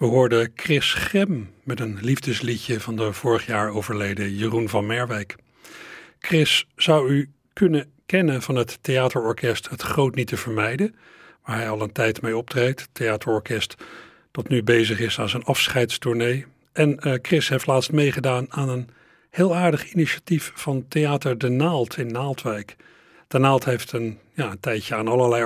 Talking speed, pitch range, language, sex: 165 wpm, 115-145 Hz, Dutch, male